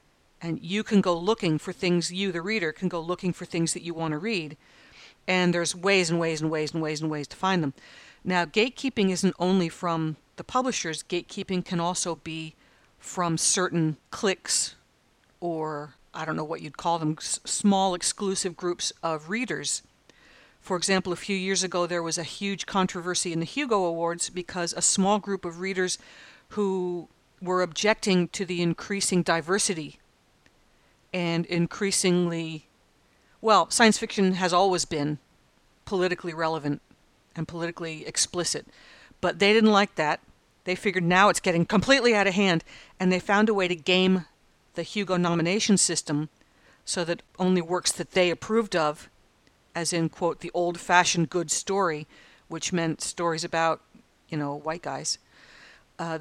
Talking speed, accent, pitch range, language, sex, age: 160 wpm, American, 165-195 Hz, English, female, 50-69